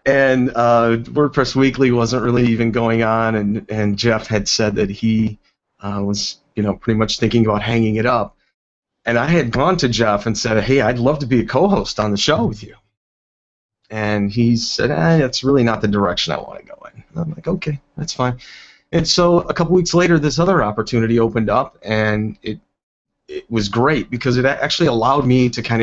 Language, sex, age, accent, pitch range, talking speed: English, male, 30-49, American, 105-130 Hz, 210 wpm